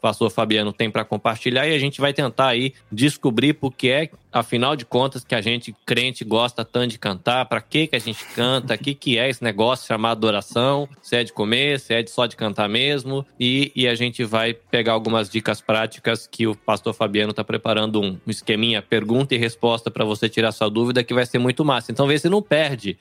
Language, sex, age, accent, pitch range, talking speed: Portuguese, male, 20-39, Brazilian, 110-130 Hz, 225 wpm